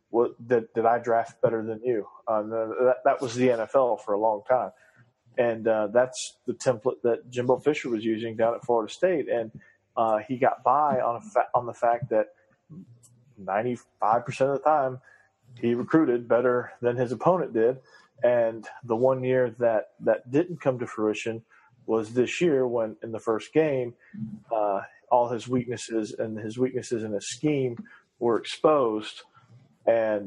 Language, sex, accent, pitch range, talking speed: English, male, American, 110-125 Hz, 170 wpm